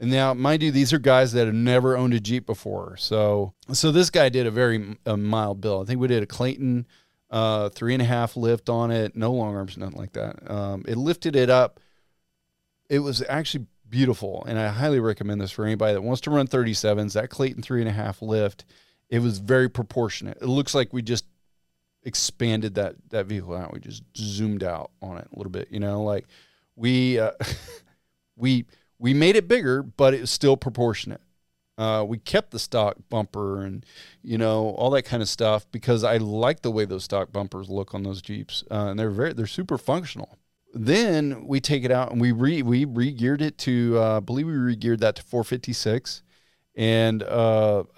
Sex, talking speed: male, 205 wpm